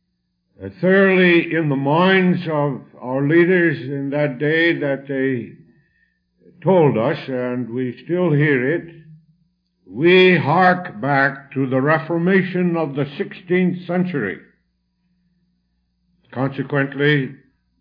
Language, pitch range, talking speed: English, 110-170 Hz, 100 wpm